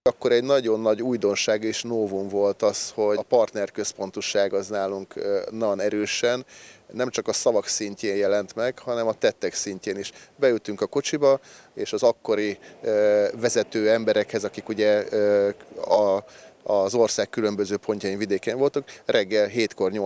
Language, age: Hungarian, 30-49